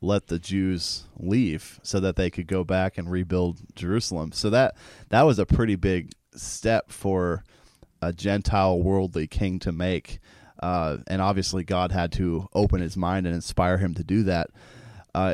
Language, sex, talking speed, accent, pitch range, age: English, male, 170 wpm, American, 90-105 Hz, 30-49